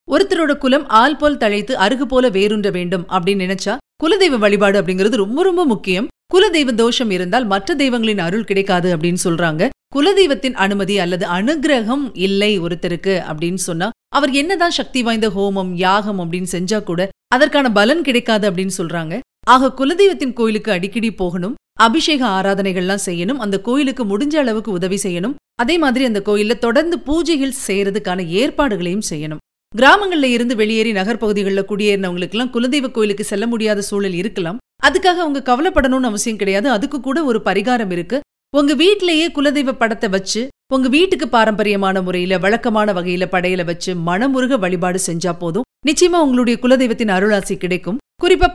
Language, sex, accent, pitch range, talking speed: Tamil, female, native, 195-275 Hz, 140 wpm